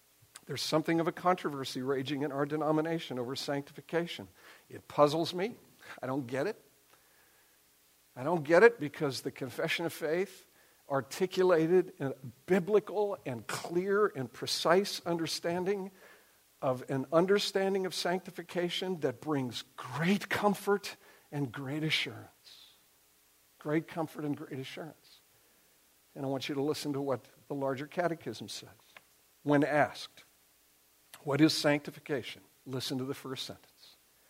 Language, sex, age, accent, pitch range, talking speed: English, male, 60-79, American, 130-175 Hz, 130 wpm